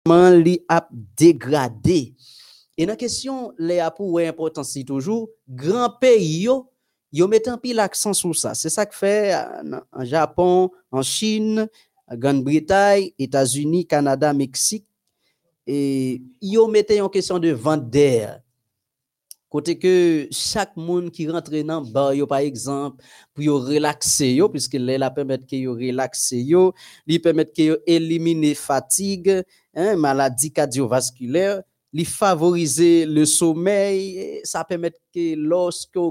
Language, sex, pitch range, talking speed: French, male, 140-190 Hz, 130 wpm